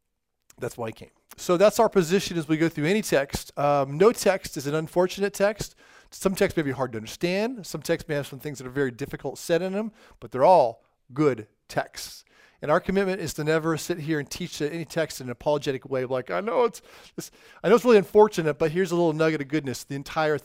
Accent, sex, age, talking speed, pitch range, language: American, male, 40-59, 240 wpm, 140-190 Hz, English